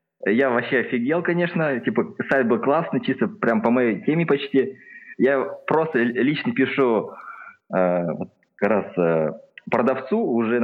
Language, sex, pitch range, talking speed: Russian, male, 120-185 Hz, 130 wpm